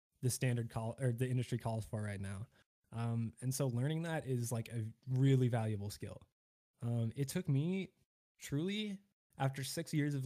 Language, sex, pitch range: English, male, 115-135 Hz